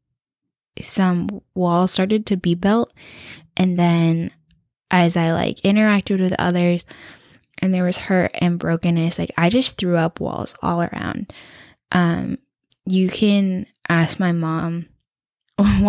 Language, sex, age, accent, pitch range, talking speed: English, female, 10-29, American, 170-205 Hz, 130 wpm